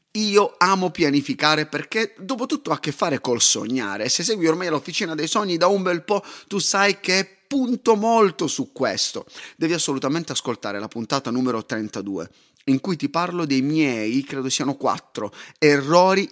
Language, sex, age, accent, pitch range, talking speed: Italian, male, 30-49, native, 135-195 Hz, 170 wpm